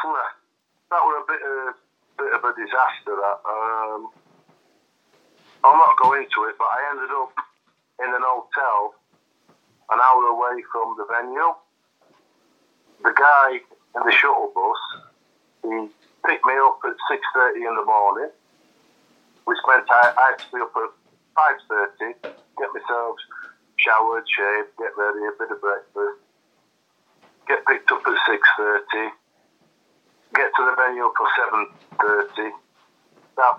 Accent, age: British, 50-69